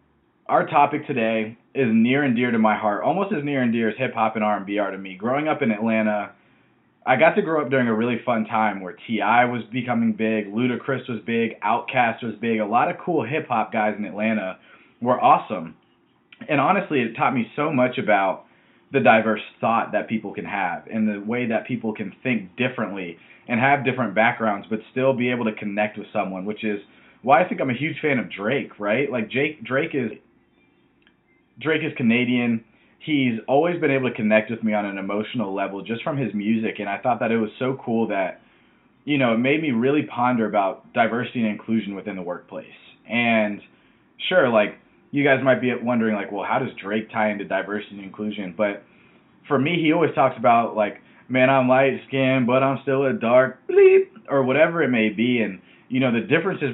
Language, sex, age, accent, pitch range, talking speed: English, male, 20-39, American, 105-130 Hz, 205 wpm